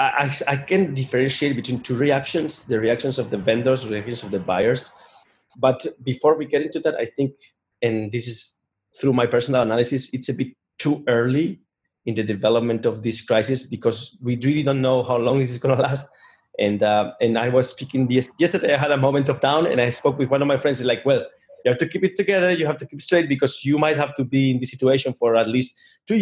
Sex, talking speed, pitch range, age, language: male, 235 wpm, 120-145 Hz, 30-49, English